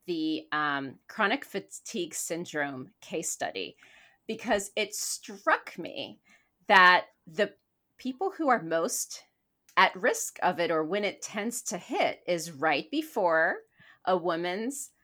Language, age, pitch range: English, 30-49, 165-235 Hz